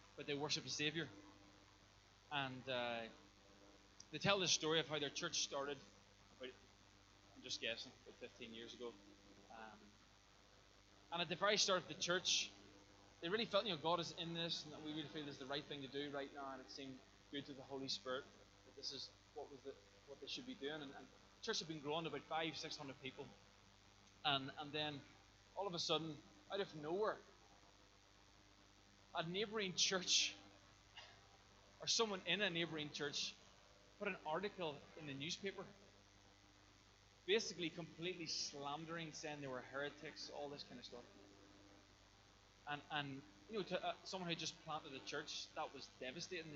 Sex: male